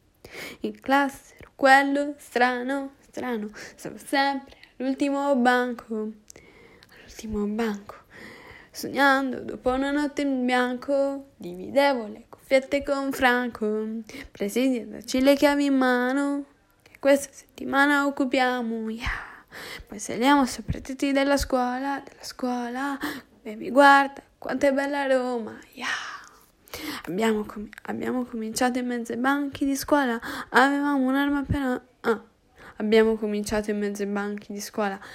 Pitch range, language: 220-270 Hz, Italian